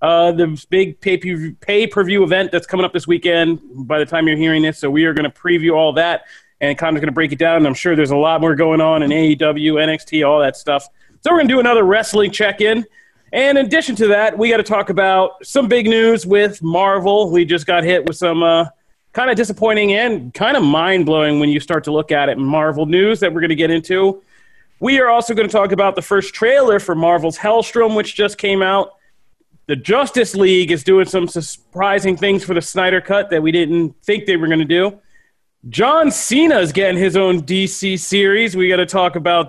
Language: English